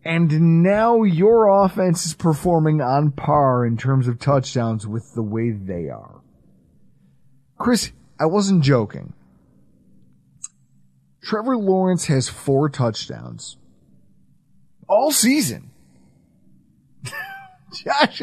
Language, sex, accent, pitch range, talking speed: English, male, American, 125-185 Hz, 95 wpm